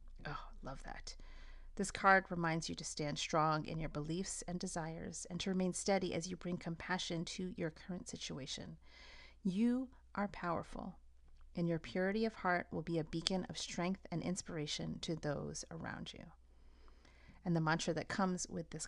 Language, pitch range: English, 150-190 Hz